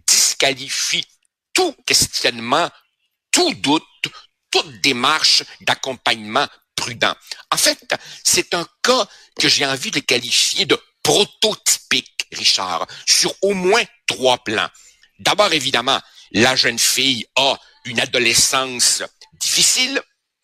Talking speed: 105 wpm